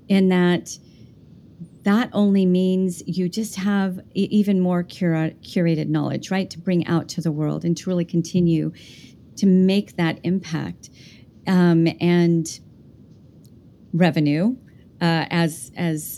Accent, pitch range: American, 160-190 Hz